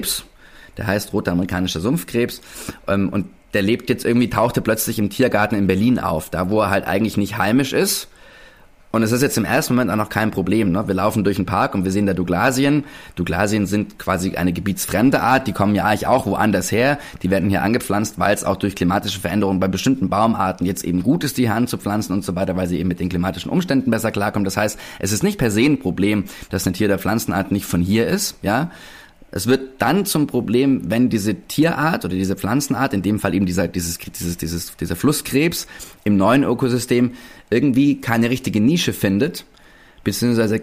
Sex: male